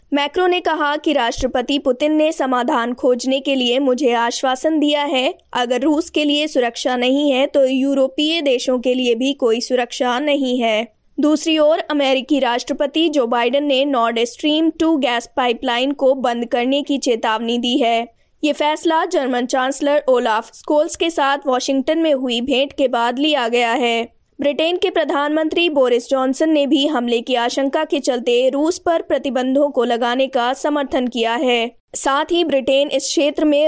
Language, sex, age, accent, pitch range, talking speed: Hindi, female, 20-39, native, 250-300 Hz, 170 wpm